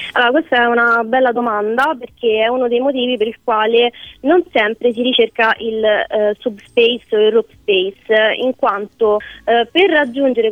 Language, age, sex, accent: Italian, 20-39, female, native